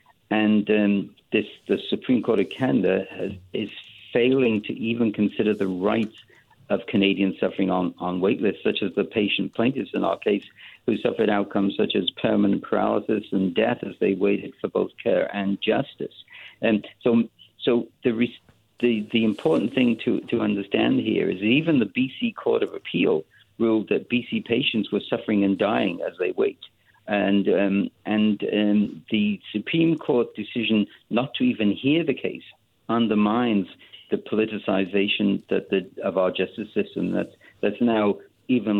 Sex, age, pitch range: male, 50-69, 100-120 Hz